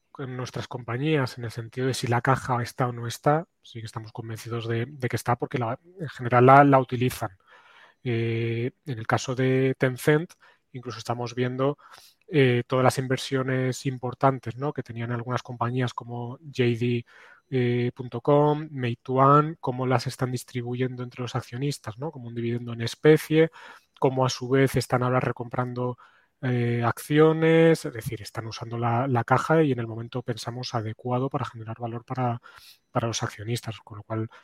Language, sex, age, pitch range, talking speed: Spanish, male, 20-39, 120-135 Hz, 165 wpm